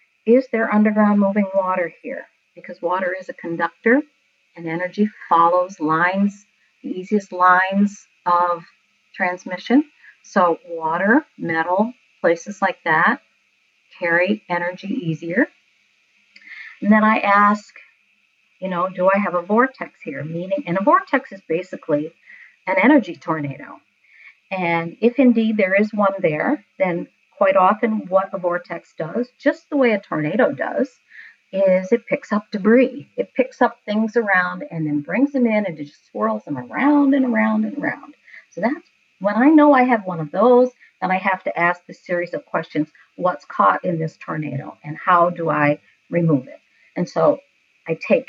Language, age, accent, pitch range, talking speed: English, 50-69, American, 175-235 Hz, 160 wpm